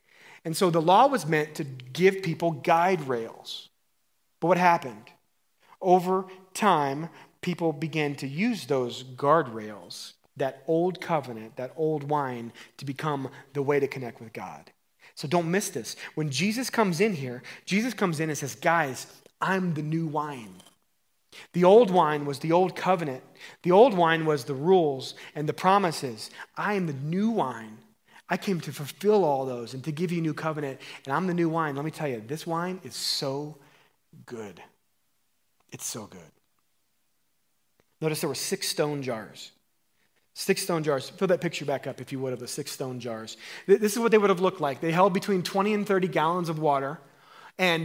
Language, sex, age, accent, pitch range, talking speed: English, male, 30-49, American, 140-185 Hz, 185 wpm